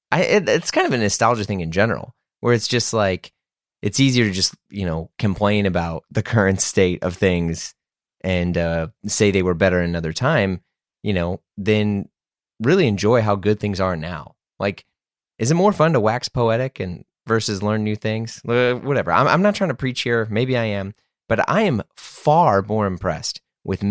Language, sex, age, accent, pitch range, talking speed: English, male, 30-49, American, 95-120 Hz, 190 wpm